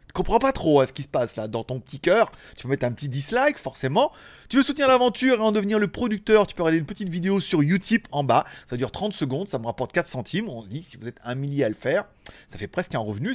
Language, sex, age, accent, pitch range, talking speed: French, male, 30-49, French, 130-195 Hz, 295 wpm